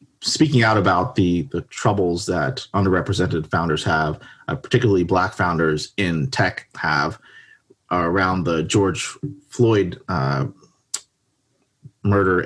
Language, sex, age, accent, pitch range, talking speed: English, male, 30-49, American, 85-120 Hz, 115 wpm